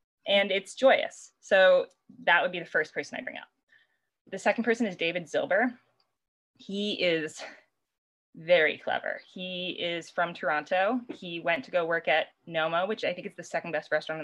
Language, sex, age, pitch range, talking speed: English, female, 20-39, 160-210 Hz, 175 wpm